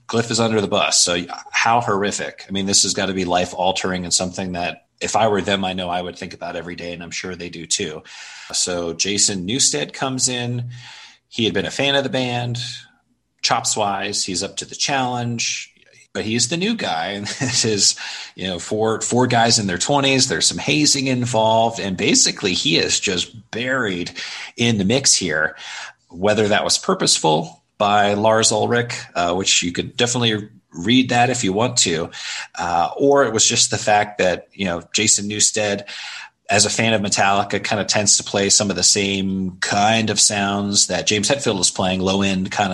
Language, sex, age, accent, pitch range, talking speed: English, male, 30-49, American, 95-115 Hz, 200 wpm